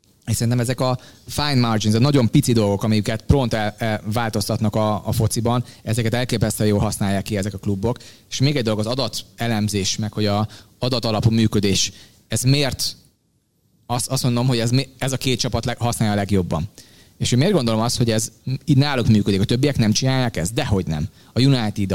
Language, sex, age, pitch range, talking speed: Hungarian, male, 30-49, 105-125 Hz, 195 wpm